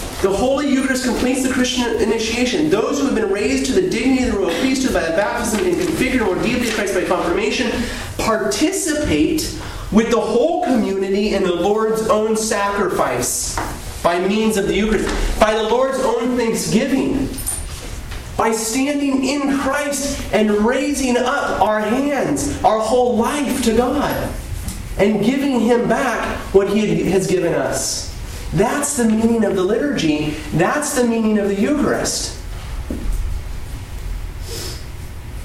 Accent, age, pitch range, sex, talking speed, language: American, 30-49, 175-250 Hz, male, 145 wpm, English